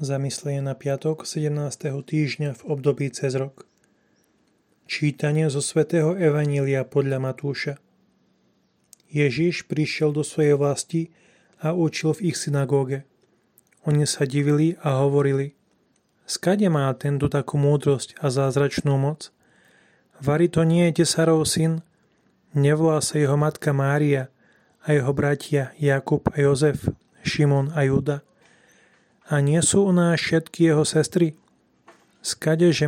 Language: Slovak